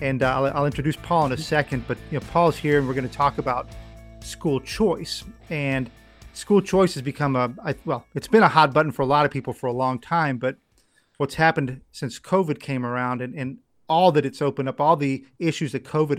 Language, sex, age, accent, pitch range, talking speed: English, male, 40-59, American, 125-150 Hz, 235 wpm